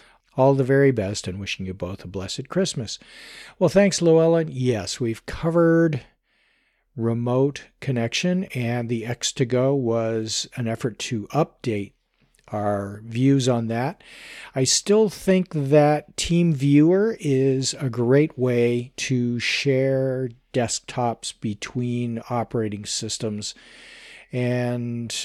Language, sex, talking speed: English, male, 115 wpm